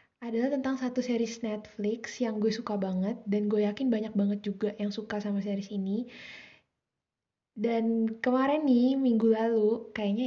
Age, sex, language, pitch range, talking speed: 10-29, female, Indonesian, 205-260 Hz, 150 wpm